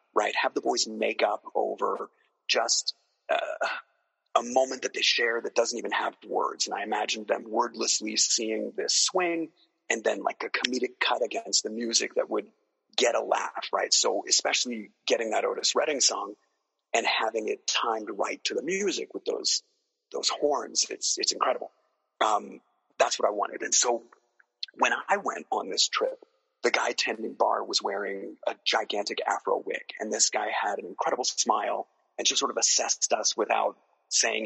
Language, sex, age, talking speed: English, male, 30-49, 180 wpm